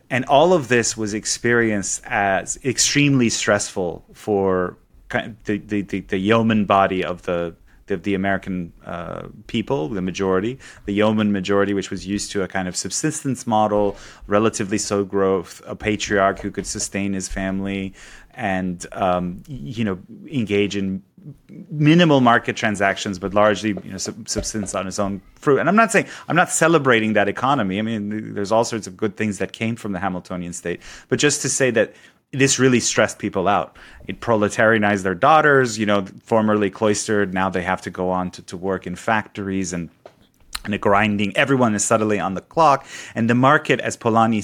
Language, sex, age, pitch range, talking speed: English, male, 30-49, 95-115 Hz, 175 wpm